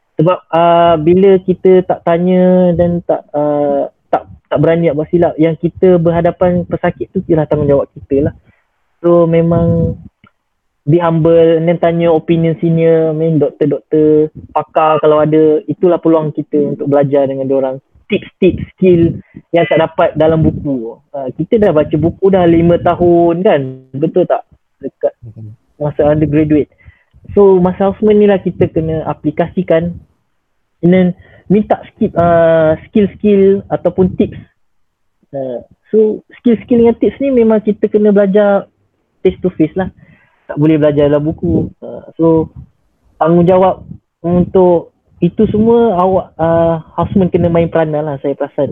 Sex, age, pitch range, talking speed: male, 20-39, 150-180 Hz, 140 wpm